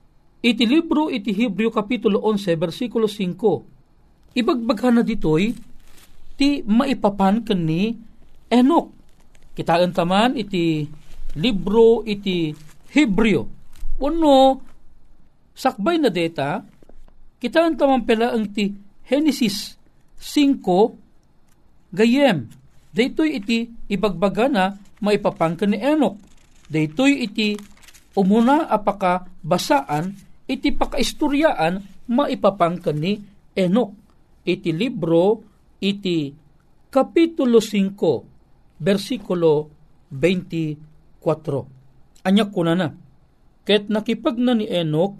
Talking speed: 75 wpm